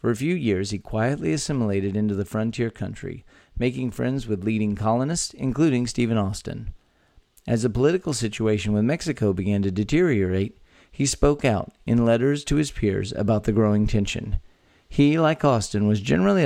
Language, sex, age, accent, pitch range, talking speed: English, male, 40-59, American, 105-135 Hz, 165 wpm